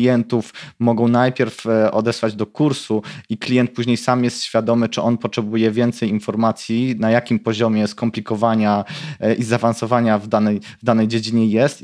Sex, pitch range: male, 110-120 Hz